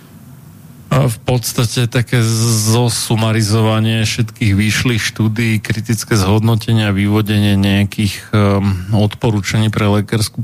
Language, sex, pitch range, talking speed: Slovak, male, 95-115 Hz, 100 wpm